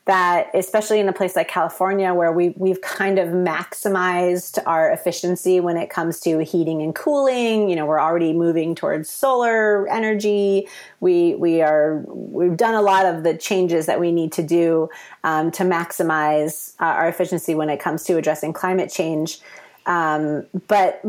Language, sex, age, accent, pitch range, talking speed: English, female, 30-49, American, 165-200 Hz, 170 wpm